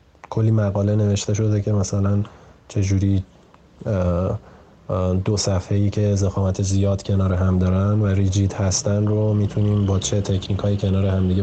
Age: 20-39